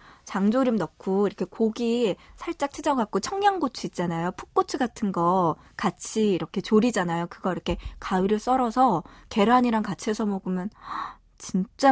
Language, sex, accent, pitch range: Korean, female, native, 180-235 Hz